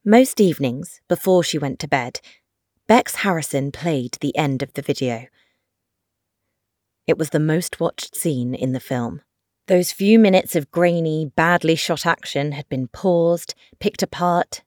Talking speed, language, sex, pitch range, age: 150 wpm, English, female, 125-170 Hz, 30-49